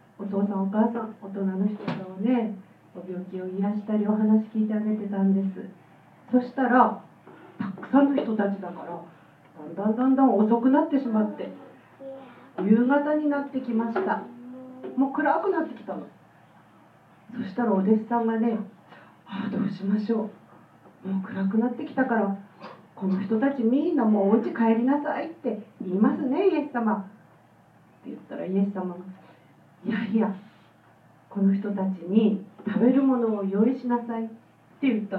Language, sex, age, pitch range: Japanese, female, 40-59, 195-245 Hz